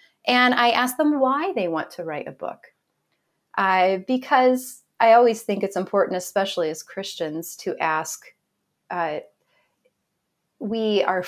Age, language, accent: 30-49, English, American